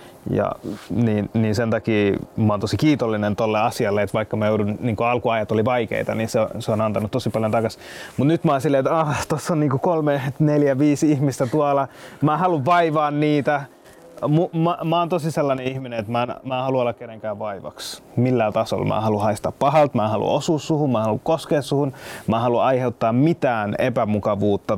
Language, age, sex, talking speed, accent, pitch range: Finnish, 20-39, male, 205 wpm, native, 110-140 Hz